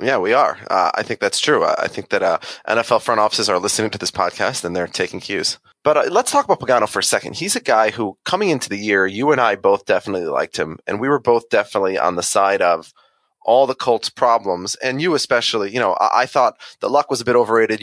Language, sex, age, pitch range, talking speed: English, male, 30-49, 95-120 Hz, 250 wpm